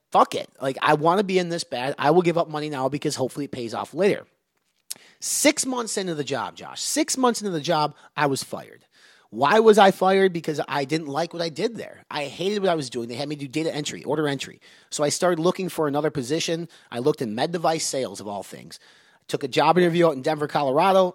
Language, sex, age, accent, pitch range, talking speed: English, male, 30-49, American, 140-185 Hz, 245 wpm